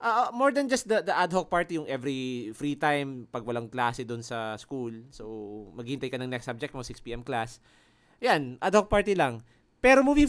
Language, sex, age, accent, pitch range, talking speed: Filipino, male, 20-39, native, 120-180 Hz, 205 wpm